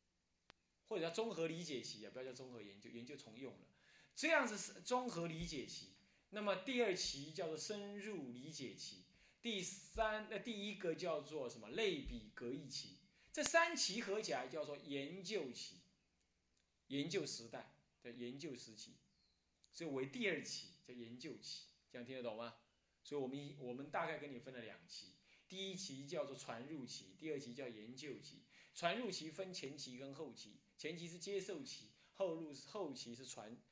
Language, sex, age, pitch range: Chinese, male, 20-39, 120-190 Hz